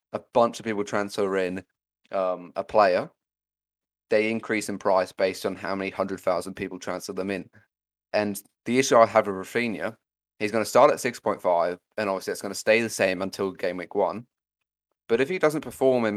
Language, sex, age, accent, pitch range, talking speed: English, male, 30-49, British, 100-115 Hz, 195 wpm